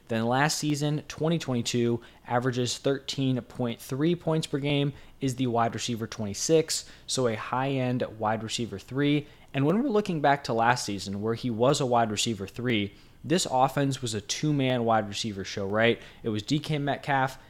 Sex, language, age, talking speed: male, English, 20-39, 170 wpm